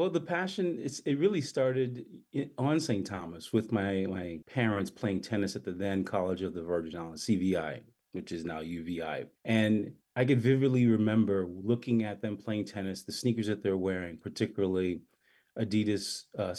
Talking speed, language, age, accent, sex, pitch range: 165 wpm, English, 30-49, American, male, 90-110 Hz